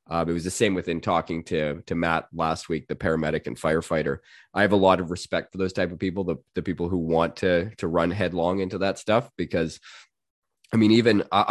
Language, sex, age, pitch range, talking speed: English, male, 20-39, 85-105 Hz, 230 wpm